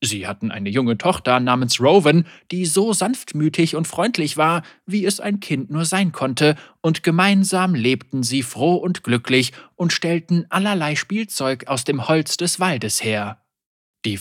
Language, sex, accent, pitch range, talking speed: German, male, German, 125-180 Hz, 160 wpm